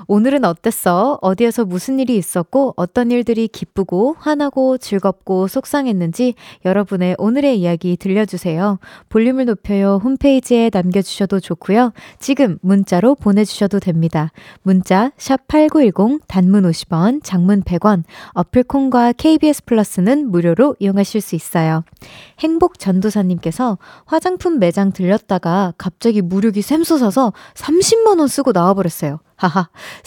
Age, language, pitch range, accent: 20-39, Korean, 190-275 Hz, native